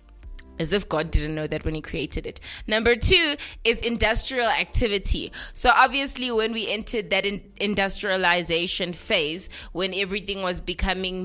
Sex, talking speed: female, 145 wpm